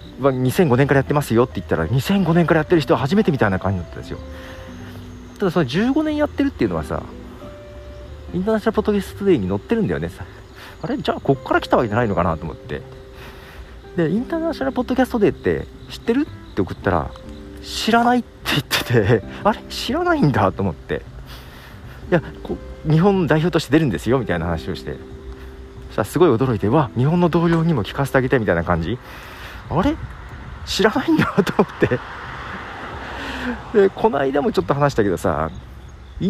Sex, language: male, Japanese